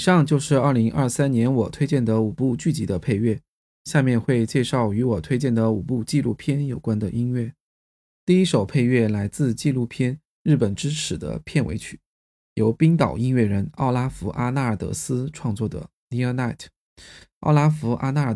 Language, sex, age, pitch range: Chinese, male, 20-39, 115-145 Hz